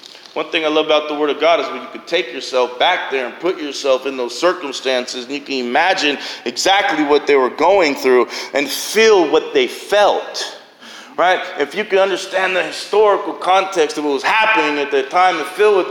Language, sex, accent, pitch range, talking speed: English, male, American, 185-235 Hz, 210 wpm